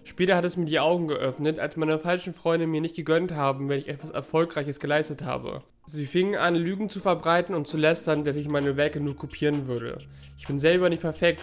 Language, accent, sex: German, German, male